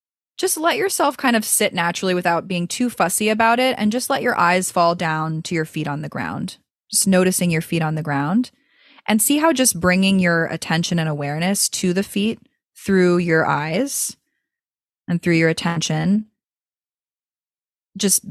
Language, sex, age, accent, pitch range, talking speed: English, female, 20-39, American, 160-205 Hz, 175 wpm